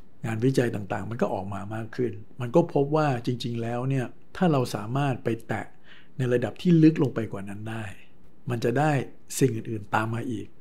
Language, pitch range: Thai, 110-135 Hz